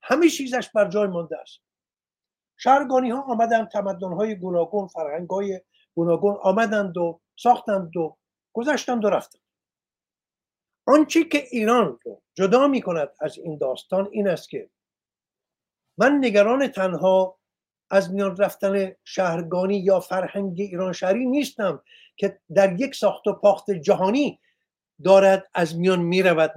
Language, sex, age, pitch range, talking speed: Persian, male, 50-69, 190-245 Hz, 125 wpm